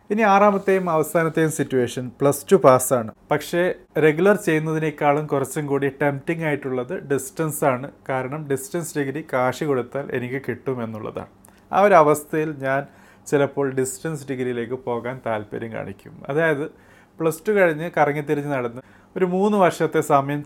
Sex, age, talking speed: male, 30-49, 125 wpm